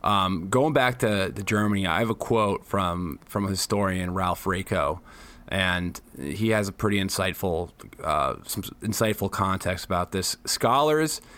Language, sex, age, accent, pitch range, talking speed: English, male, 30-49, American, 100-120 Hz, 155 wpm